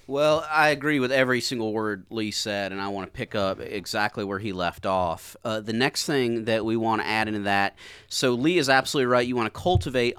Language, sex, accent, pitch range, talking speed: English, male, American, 105-150 Hz, 235 wpm